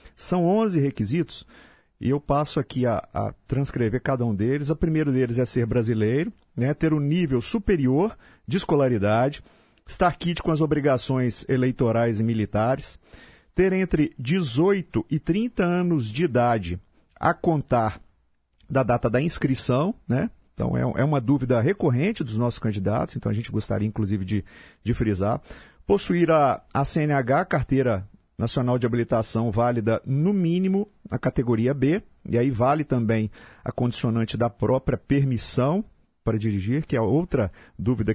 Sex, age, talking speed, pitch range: male, 40-59, 150 wpm, 110-150 Hz